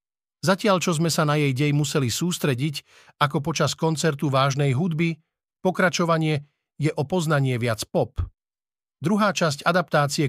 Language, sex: Slovak, male